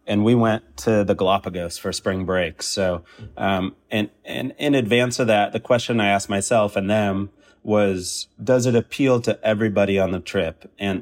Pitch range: 90-100 Hz